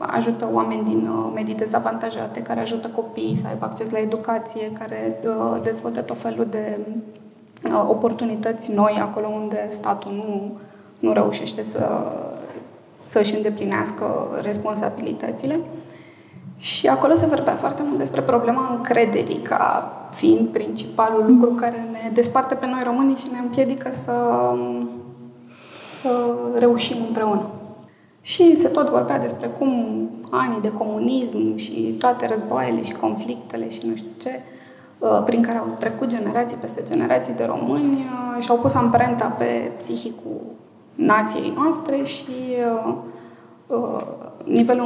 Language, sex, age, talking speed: Romanian, female, 20-39, 125 wpm